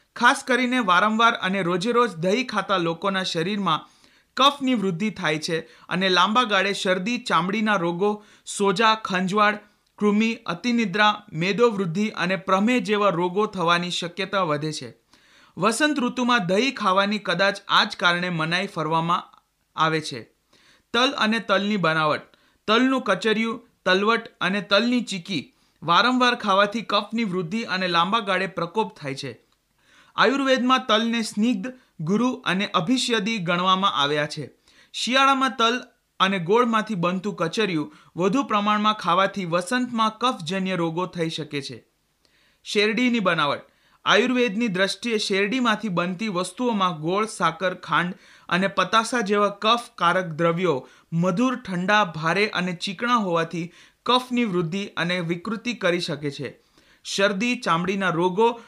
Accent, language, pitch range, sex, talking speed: native, Hindi, 175-230 Hz, male, 75 wpm